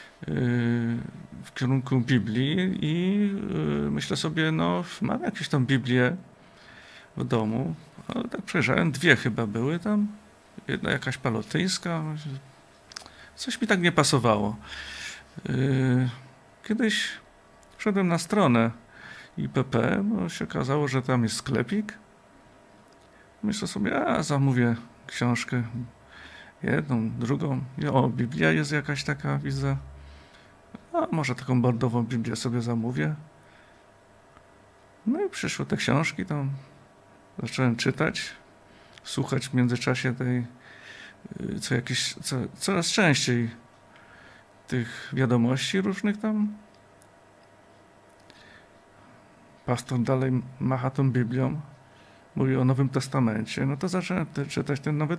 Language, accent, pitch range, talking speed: Polish, native, 120-165 Hz, 105 wpm